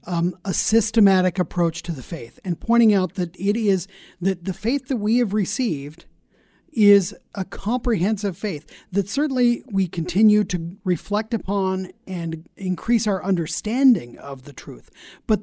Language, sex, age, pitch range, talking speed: English, male, 40-59, 180-220 Hz, 150 wpm